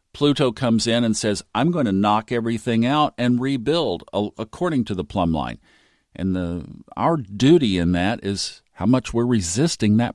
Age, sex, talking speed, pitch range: 50-69, male, 175 wpm, 95-125 Hz